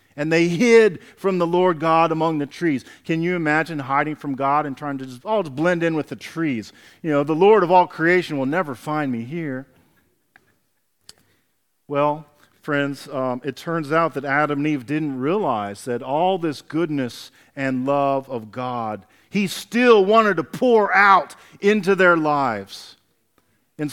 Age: 40-59